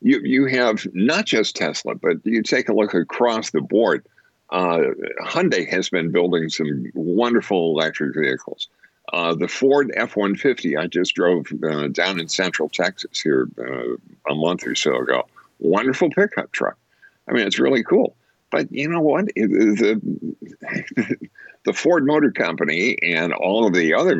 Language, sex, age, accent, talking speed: English, male, 60-79, American, 165 wpm